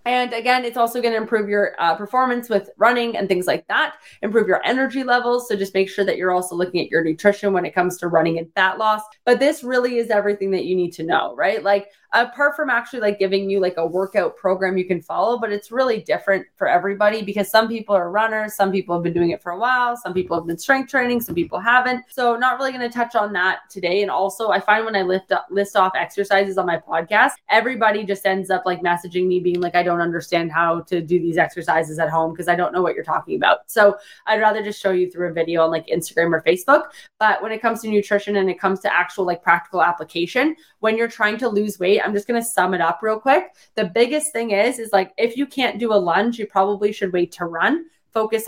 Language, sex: English, female